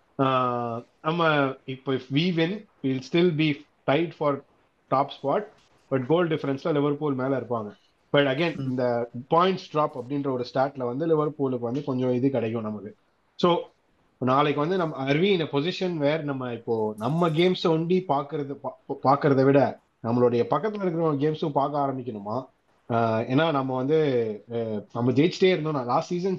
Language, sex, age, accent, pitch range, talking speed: Tamil, male, 30-49, native, 125-155 Hz, 155 wpm